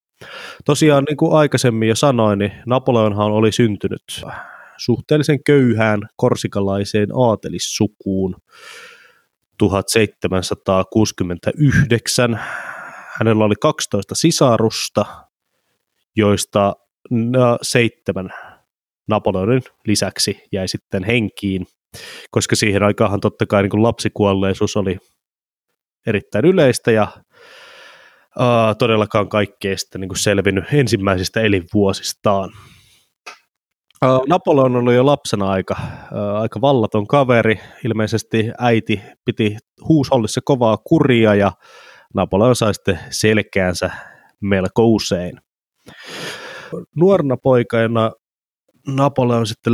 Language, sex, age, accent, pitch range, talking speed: Finnish, male, 20-39, native, 100-125 Hz, 80 wpm